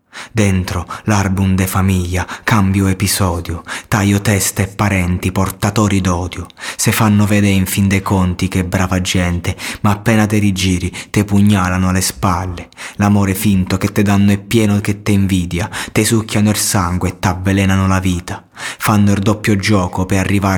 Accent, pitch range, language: native, 95-105 Hz, Italian